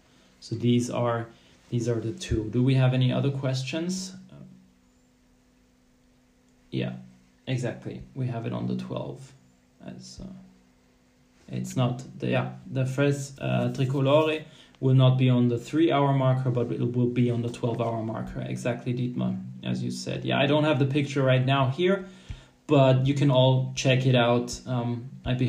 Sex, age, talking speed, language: male, 20-39, 170 wpm, English